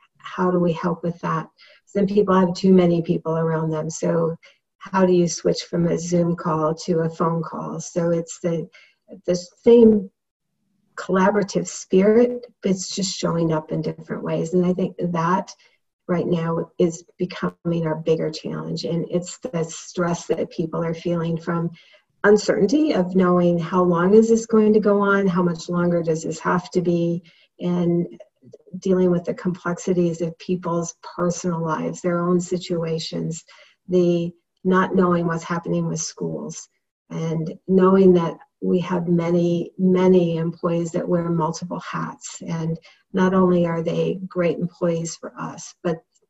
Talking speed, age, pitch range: 160 wpm, 40-59, 165-185 Hz